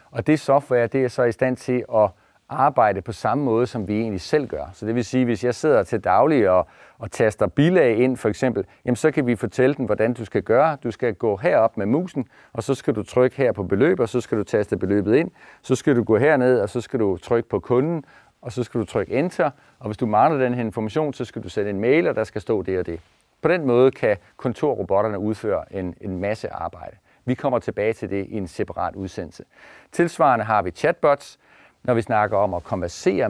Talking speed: 240 wpm